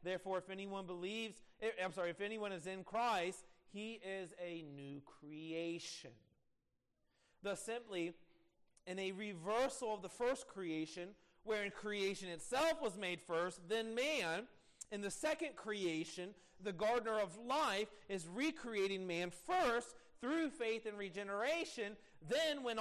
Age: 40-59